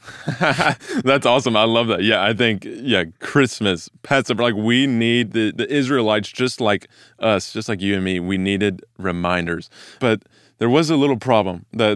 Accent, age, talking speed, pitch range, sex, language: American, 20-39, 175 wpm, 95-110 Hz, male, English